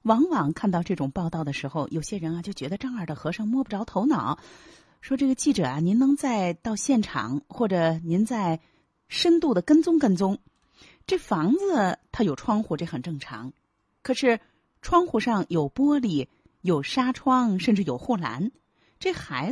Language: Chinese